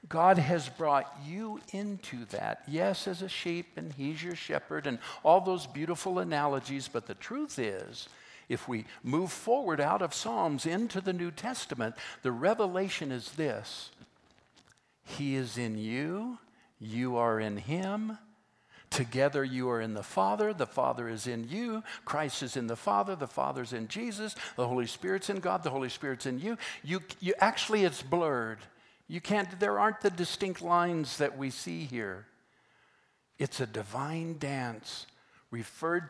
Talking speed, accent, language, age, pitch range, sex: 160 wpm, American, English, 60-79, 125-185 Hz, male